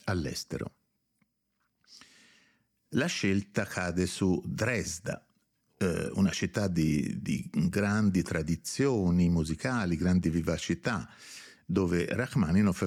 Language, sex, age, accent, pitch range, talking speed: Italian, male, 50-69, native, 85-110 Hz, 80 wpm